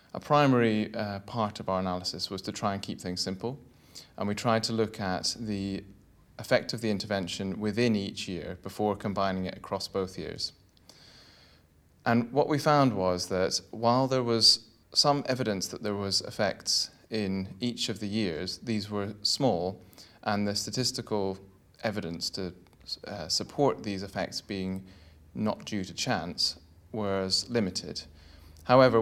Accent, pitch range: British, 90-110 Hz